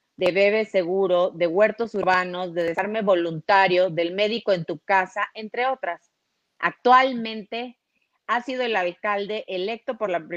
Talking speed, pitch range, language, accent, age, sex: 140 wpm, 180-215 Hz, Spanish, Mexican, 30-49, female